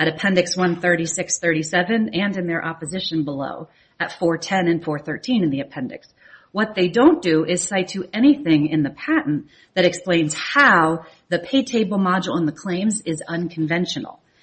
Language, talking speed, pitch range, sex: English, 160 wpm, 170-230 Hz, female